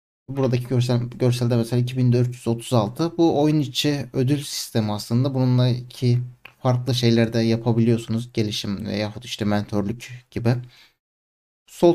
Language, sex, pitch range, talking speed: Turkish, male, 120-135 Hz, 110 wpm